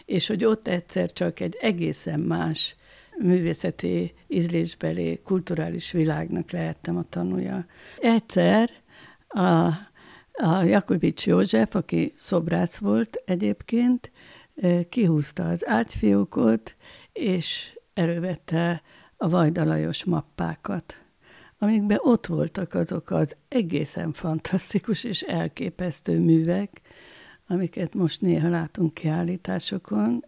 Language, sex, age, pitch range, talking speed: Hungarian, female, 60-79, 160-190 Hz, 95 wpm